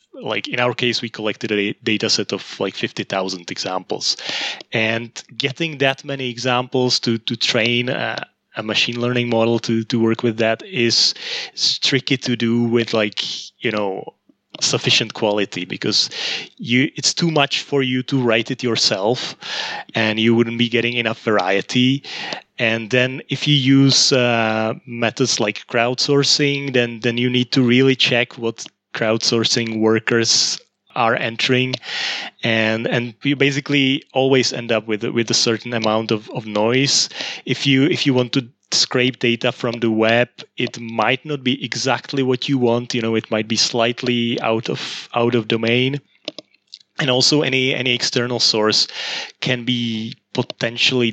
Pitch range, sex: 115-130 Hz, male